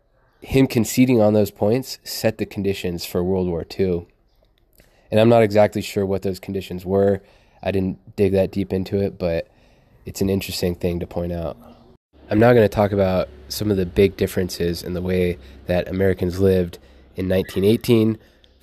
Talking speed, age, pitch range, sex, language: 175 wpm, 20-39, 90-105 Hz, male, English